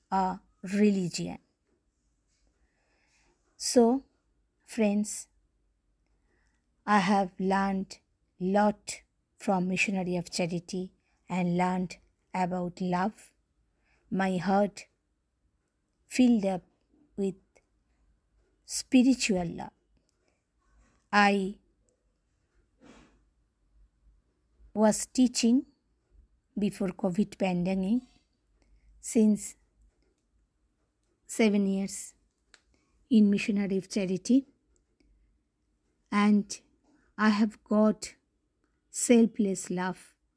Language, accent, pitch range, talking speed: English, Indian, 180-215 Hz, 60 wpm